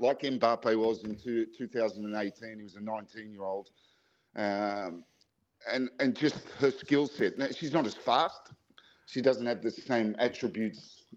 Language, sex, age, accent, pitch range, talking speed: English, male, 50-69, Australian, 110-130 Hz, 145 wpm